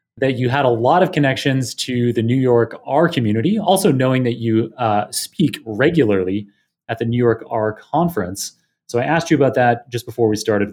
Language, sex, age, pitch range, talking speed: English, male, 30-49, 110-135 Hz, 200 wpm